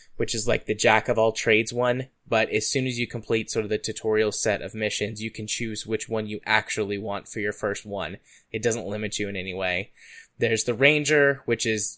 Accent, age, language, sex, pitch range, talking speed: American, 10-29, English, male, 105-120 Hz, 215 wpm